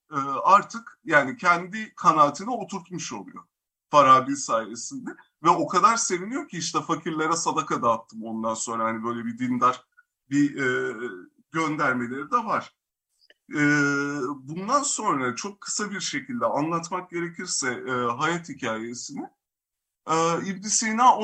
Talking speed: 110 wpm